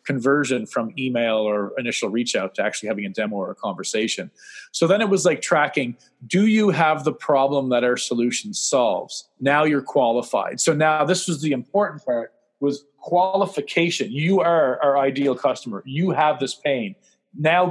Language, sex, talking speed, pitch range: English, male, 175 wpm, 125-160 Hz